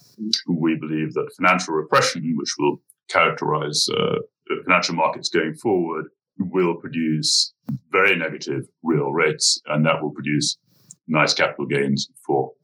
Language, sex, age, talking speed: English, male, 60-79, 135 wpm